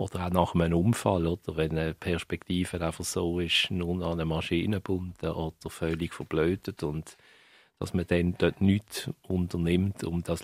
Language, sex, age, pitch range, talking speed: German, male, 50-69, 85-105 Hz, 165 wpm